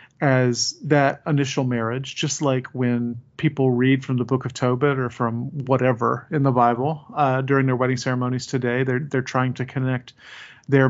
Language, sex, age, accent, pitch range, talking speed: English, male, 40-59, American, 125-145 Hz, 175 wpm